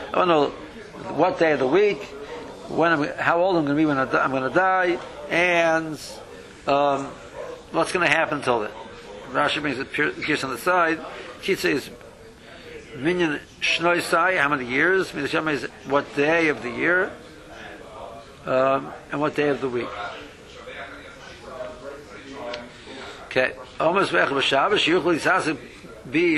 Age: 60-79